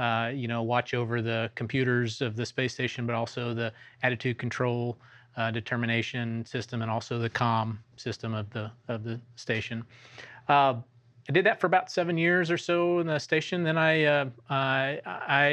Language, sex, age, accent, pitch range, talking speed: English, male, 30-49, American, 115-130 Hz, 180 wpm